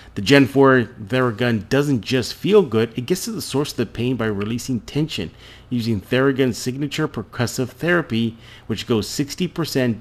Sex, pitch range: male, 110-135 Hz